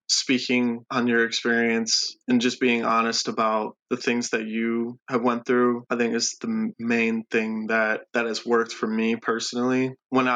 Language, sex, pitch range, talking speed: English, male, 115-120 Hz, 175 wpm